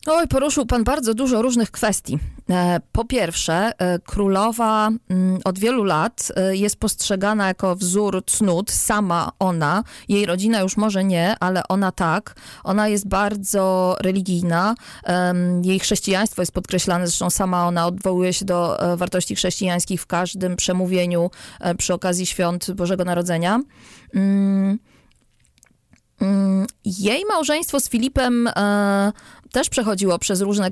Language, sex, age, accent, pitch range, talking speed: Polish, female, 20-39, native, 180-225 Hz, 115 wpm